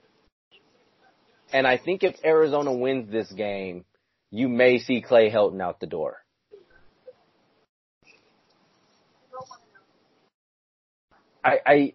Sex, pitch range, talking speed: male, 130-220 Hz, 85 wpm